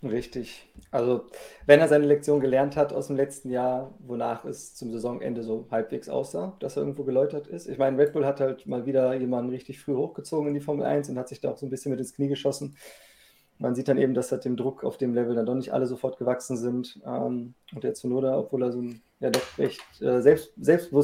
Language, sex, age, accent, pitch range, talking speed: German, male, 20-39, German, 125-140 Hz, 230 wpm